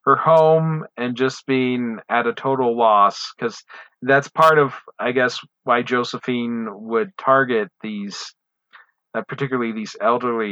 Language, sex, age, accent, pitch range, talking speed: English, male, 40-59, American, 110-135 Hz, 135 wpm